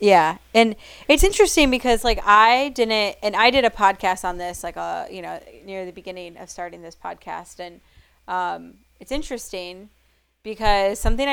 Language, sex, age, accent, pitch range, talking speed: English, female, 20-39, American, 175-205 Hz, 175 wpm